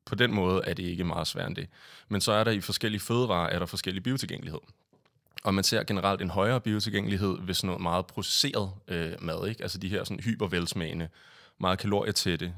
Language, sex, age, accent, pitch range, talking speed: Danish, male, 30-49, native, 90-105 Hz, 200 wpm